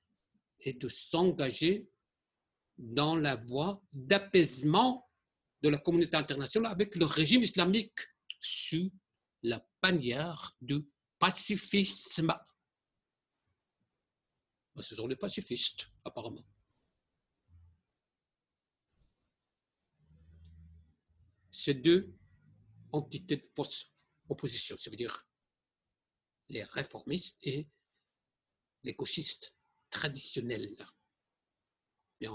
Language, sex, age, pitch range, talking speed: Persian, male, 60-79, 125-180 Hz, 70 wpm